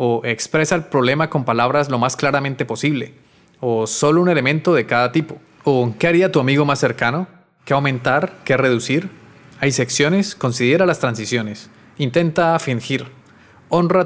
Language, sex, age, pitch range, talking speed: Spanish, male, 30-49, 125-155 Hz, 155 wpm